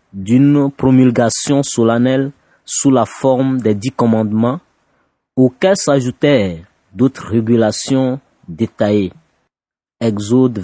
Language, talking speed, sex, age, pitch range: French, 85 wpm, male, 30-49, 125-160 Hz